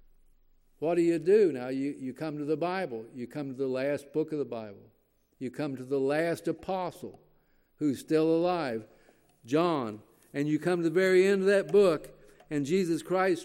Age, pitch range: 60-79, 140-175 Hz